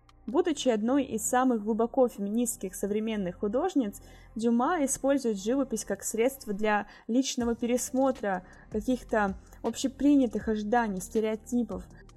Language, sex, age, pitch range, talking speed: Russian, female, 20-39, 205-250 Hz, 100 wpm